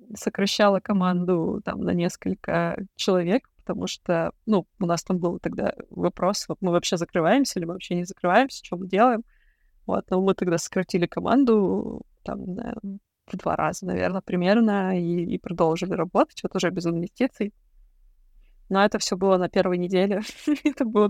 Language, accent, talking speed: Russian, native, 160 wpm